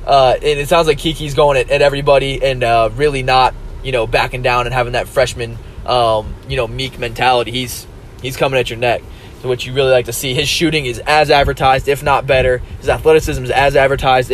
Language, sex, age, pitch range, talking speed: English, male, 20-39, 120-145 Hz, 220 wpm